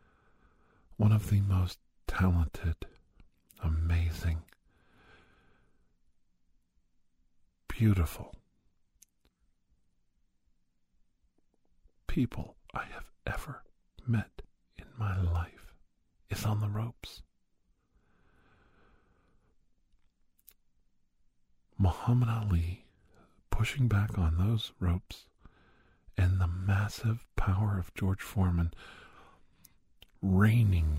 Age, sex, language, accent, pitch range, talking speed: 50-69, male, English, American, 75-100 Hz, 65 wpm